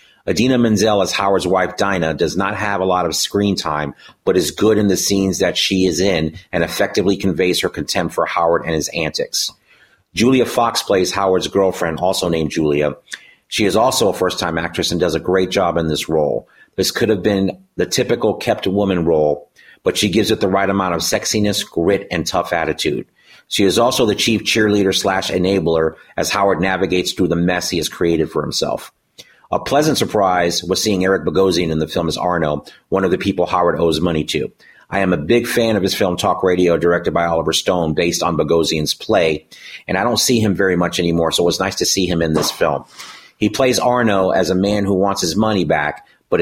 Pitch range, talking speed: 85-100 Hz, 215 wpm